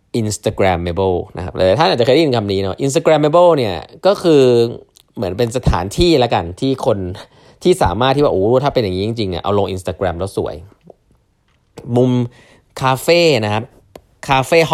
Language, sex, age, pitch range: Thai, male, 20-39, 95-130 Hz